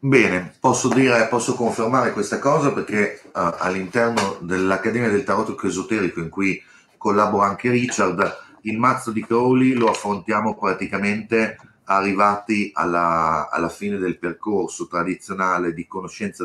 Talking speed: 130 wpm